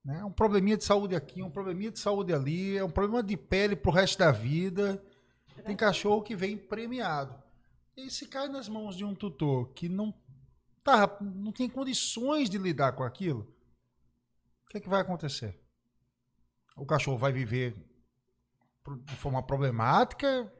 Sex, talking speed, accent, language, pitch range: male, 155 wpm, Brazilian, Portuguese, 140-205 Hz